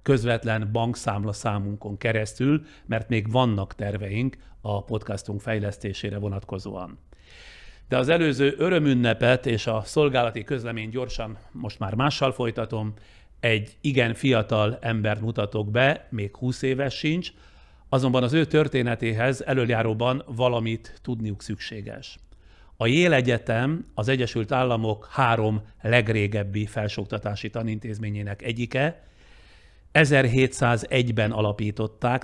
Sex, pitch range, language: male, 105-130 Hz, Hungarian